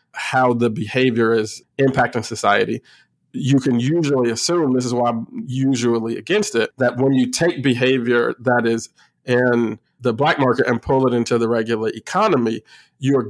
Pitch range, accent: 120-135 Hz, American